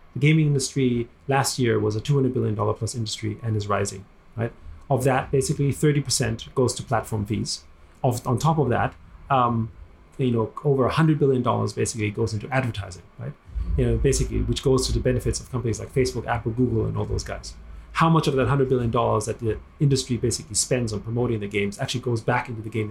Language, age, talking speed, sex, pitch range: English, 30-49, 205 wpm, male, 110-135 Hz